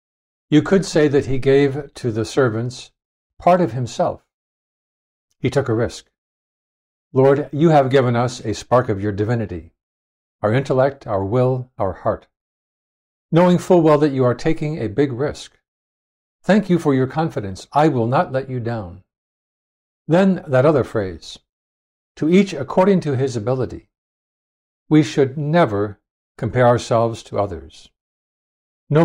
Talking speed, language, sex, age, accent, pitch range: 145 wpm, English, male, 60-79, American, 100-145 Hz